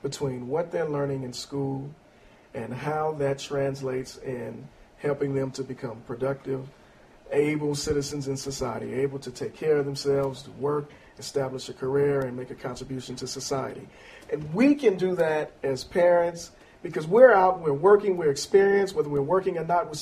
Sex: male